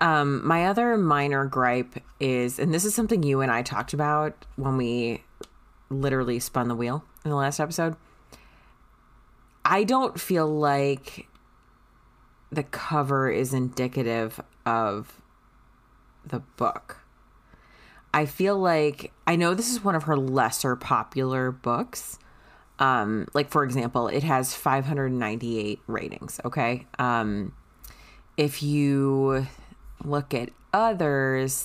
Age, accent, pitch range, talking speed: 30-49, American, 120-145 Hz, 120 wpm